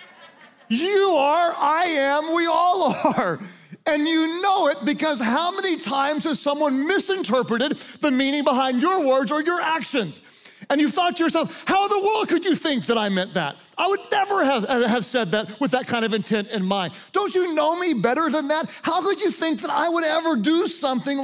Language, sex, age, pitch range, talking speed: English, male, 40-59, 235-320 Hz, 205 wpm